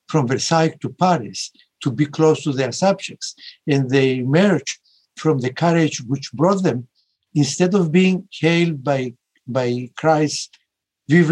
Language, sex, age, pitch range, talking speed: English, male, 60-79, 135-180 Hz, 145 wpm